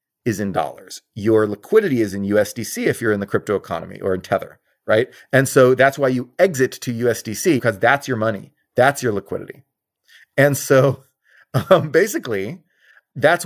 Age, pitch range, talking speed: 30-49, 115-145 Hz, 170 wpm